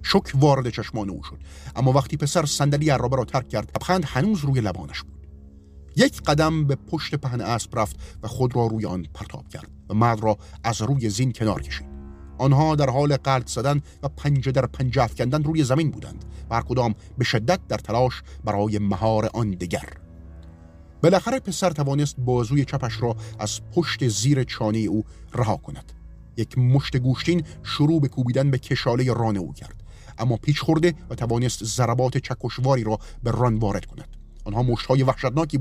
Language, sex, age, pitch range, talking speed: Persian, male, 40-59, 110-145 Hz, 175 wpm